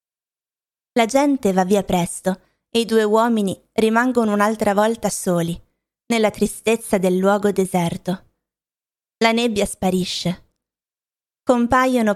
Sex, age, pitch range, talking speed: female, 20-39, 185-225 Hz, 110 wpm